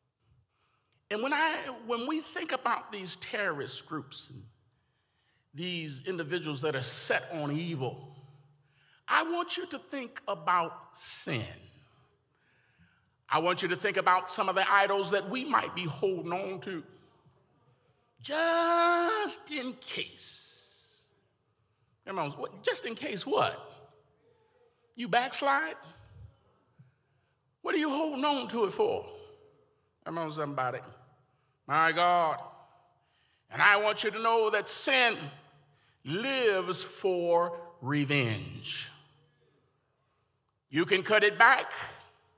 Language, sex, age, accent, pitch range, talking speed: English, male, 50-69, American, 135-210 Hz, 110 wpm